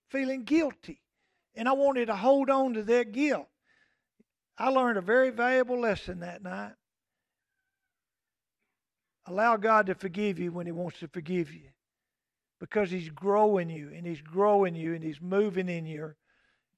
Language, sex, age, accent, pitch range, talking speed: English, male, 50-69, American, 190-245 Hz, 155 wpm